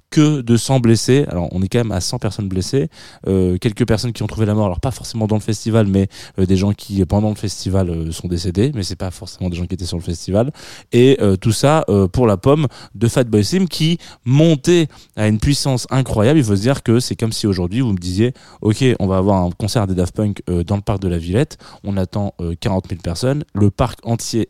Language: French